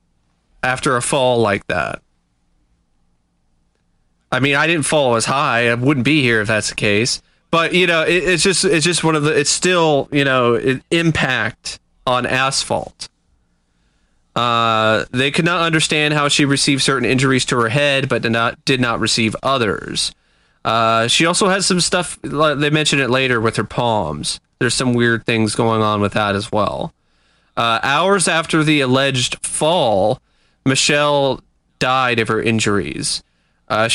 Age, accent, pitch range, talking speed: 30-49, American, 115-165 Hz, 165 wpm